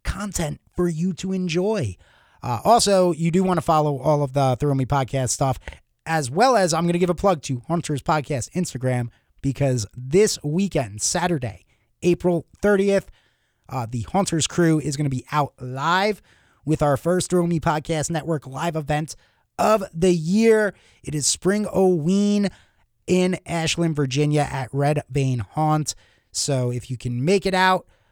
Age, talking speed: 30-49, 165 wpm